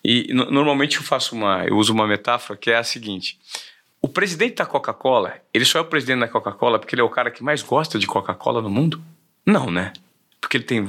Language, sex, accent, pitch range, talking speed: Portuguese, male, Brazilian, 120-200 Hz, 225 wpm